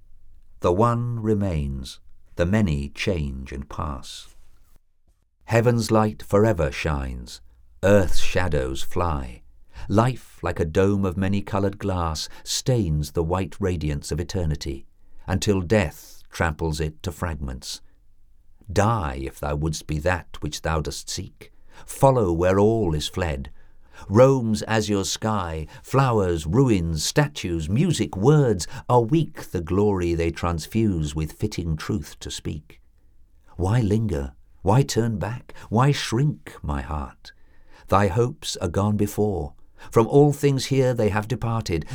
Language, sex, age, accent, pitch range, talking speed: English, male, 50-69, British, 75-110 Hz, 130 wpm